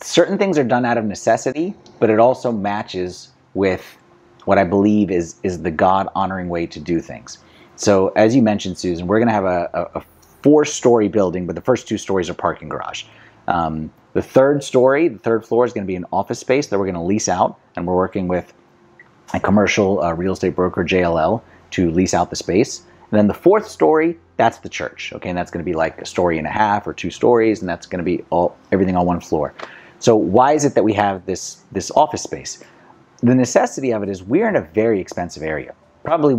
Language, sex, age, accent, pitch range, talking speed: English, male, 30-49, American, 90-115 Hz, 215 wpm